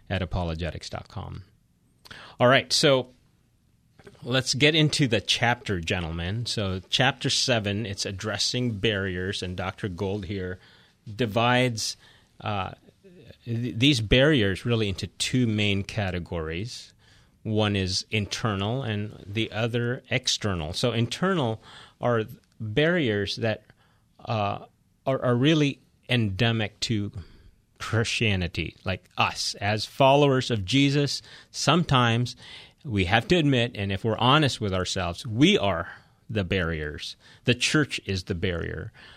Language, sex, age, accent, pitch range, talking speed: English, male, 30-49, American, 95-125 Hz, 115 wpm